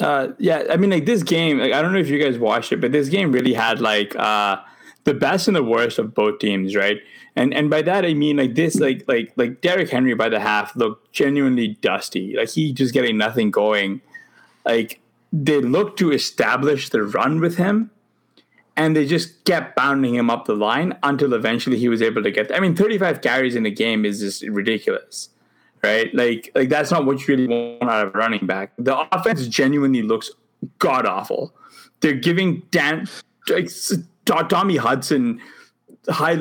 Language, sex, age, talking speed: English, male, 20-39, 200 wpm